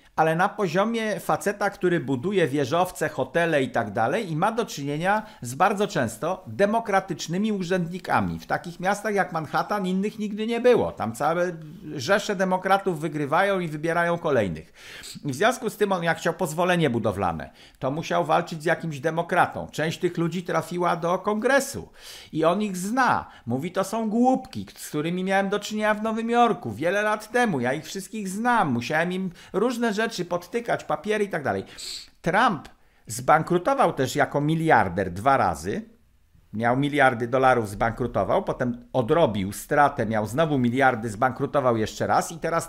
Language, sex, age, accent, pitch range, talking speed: Polish, male, 50-69, native, 150-210 Hz, 160 wpm